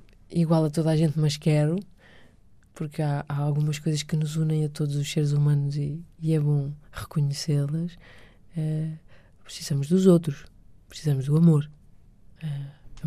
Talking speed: 155 wpm